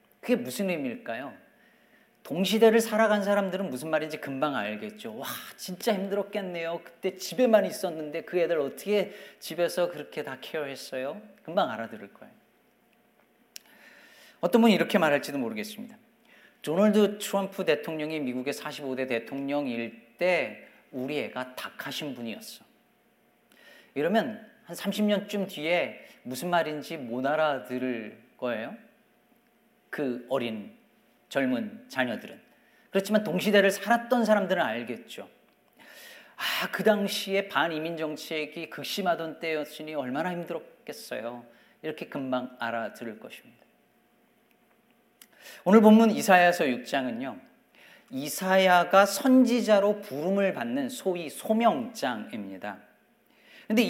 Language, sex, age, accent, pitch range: Korean, male, 40-59, native, 155-225 Hz